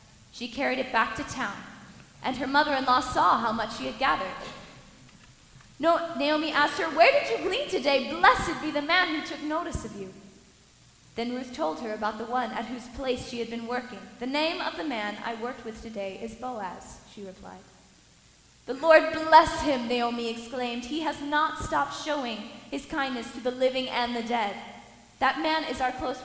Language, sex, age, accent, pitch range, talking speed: English, female, 20-39, American, 225-290 Hz, 190 wpm